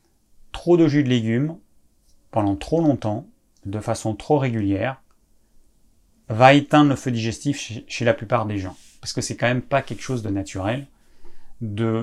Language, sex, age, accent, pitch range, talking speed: French, male, 30-49, French, 110-140 Hz, 165 wpm